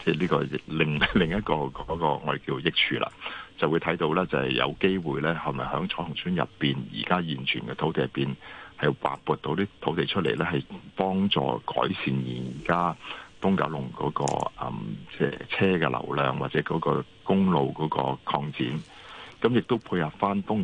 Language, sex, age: Chinese, male, 60-79